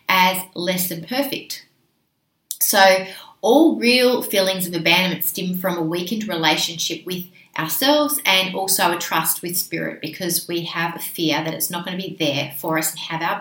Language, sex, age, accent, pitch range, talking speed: English, female, 30-49, Australian, 170-215 Hz, 180 wpm